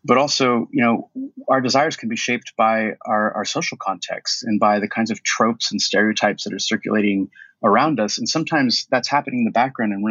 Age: 30-49